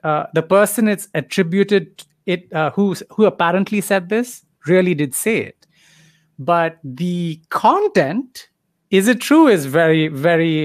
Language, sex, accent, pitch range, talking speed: English, male, Indian, 150-200 Hz, 135 wpm